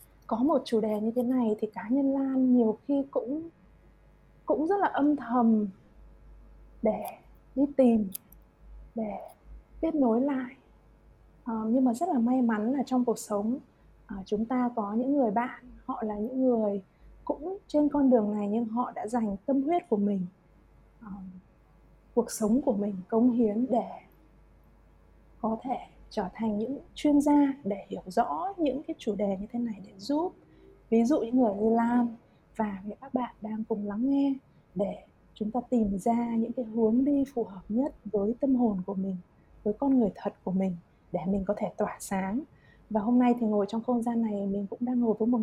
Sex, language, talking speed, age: female, Vietnamese, 190 wpm, 20-39